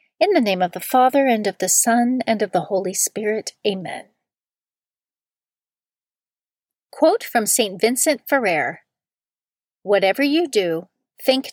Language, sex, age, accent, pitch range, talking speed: English, female, 40-59, American, 200-260 Hz, 130 wpm